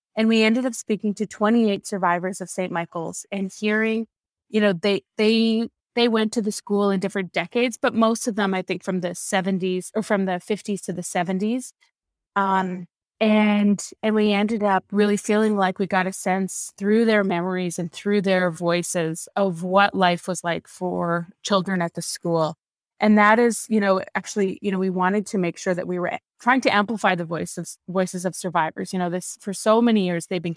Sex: female